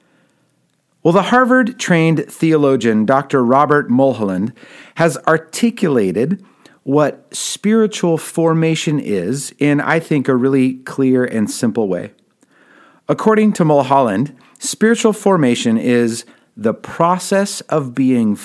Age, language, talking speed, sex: 40-59, English, 105 wpm, male